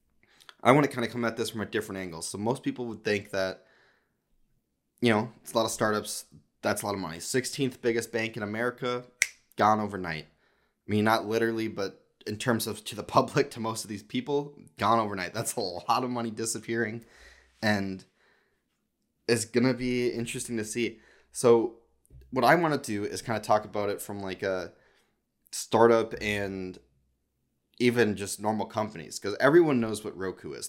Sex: male